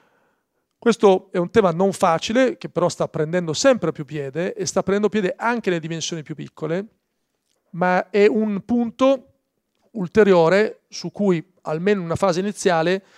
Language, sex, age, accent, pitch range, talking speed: Italian, male, 40-59, native, 165-205 Hz, 155 wpm